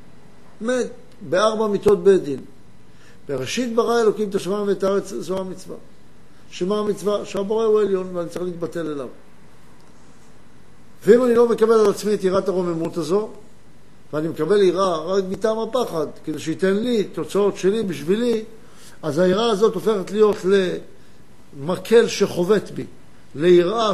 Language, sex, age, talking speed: Hebrew, male, 60-79, 130 wpm